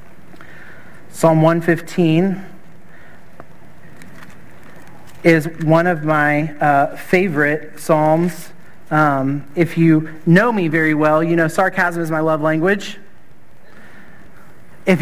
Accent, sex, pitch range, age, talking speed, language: American, male, 160-185 Hz, 40-59, 95 wpm, English